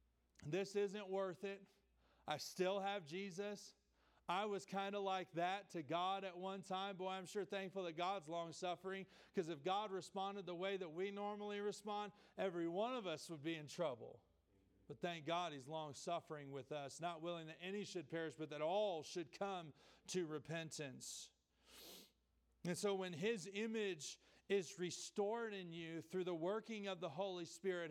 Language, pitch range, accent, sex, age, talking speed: English, 160-200 Hz, American, male, 40-59, 170 wpm